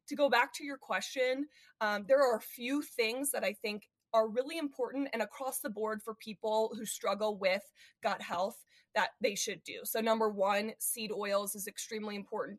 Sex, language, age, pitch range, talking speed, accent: female, English, 20-39, 205-255 Hz, 195 wpm, American